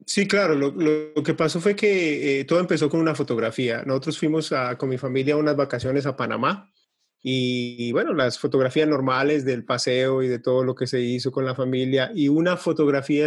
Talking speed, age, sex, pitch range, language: 210 wpm, 30-49, male, 130-155 Hz, Spanish